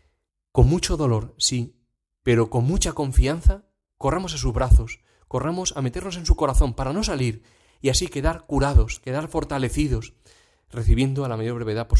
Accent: Spanish